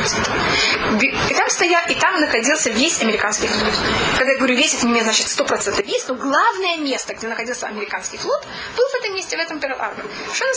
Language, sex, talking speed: Russian, female, 195 wpm